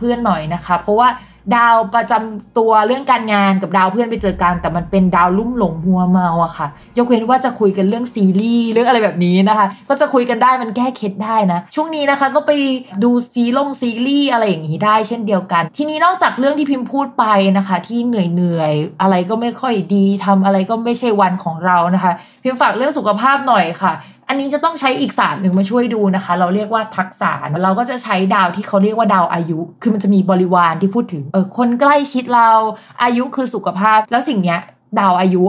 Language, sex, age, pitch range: Thai, female, 20-39, 185-240 Hz